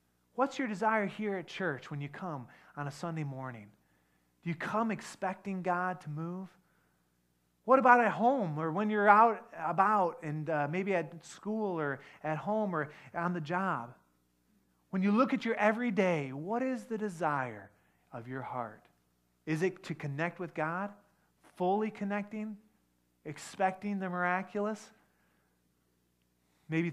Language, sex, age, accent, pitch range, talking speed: English, male, 30-49, American, 115-195 Hz, 145 wpm